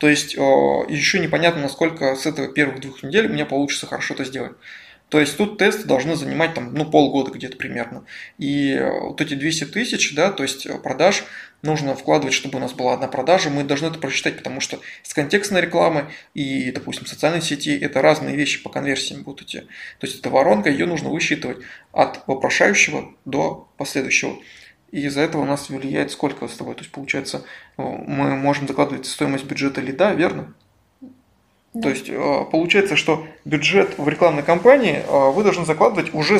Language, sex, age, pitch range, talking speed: Russian, male, 20-39, 140-165 Hz, 175 wpm